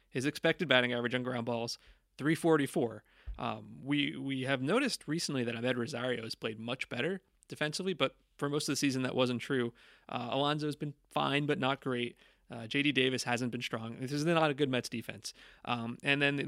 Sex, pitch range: male, 120-145 Hz